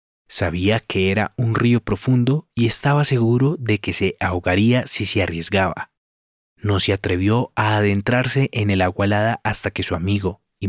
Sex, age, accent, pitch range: male, 30-49, Colombian, 95-120 Hz